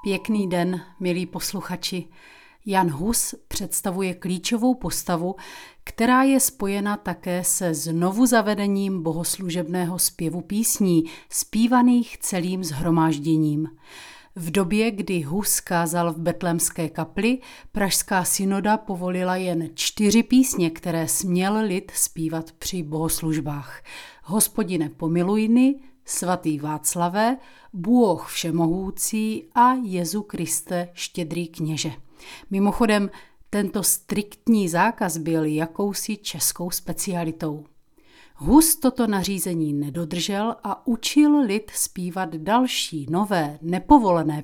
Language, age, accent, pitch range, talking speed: Czech, 40-59, native, 170-215 Hz, 95 wpm